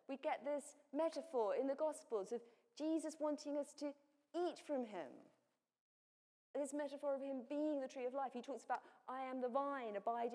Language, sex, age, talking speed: English, female, 40-59, 185 wpm